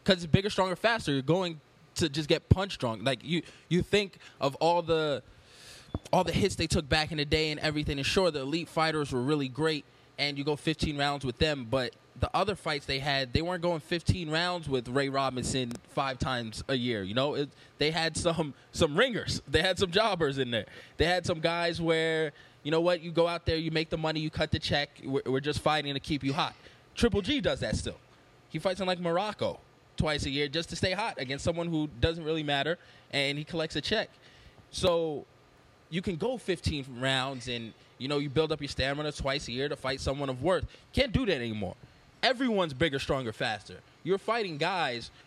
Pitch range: 135-170 Hz